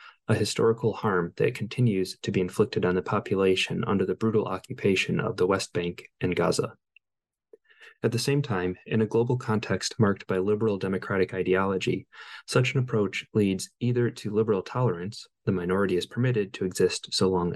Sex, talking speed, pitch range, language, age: male, 170 wpm, 90-115 Hz, English, 20-39